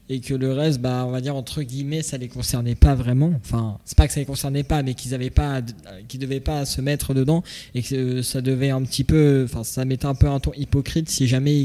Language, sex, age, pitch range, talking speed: French, male, 20-39, 120-135 Hz, 265 wpm